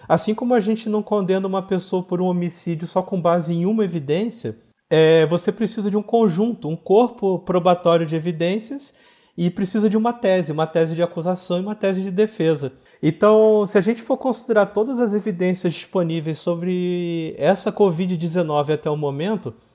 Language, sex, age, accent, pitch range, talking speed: Portuguese, male, 40-59, Brazilian, 175-220 Hz, 175 wpm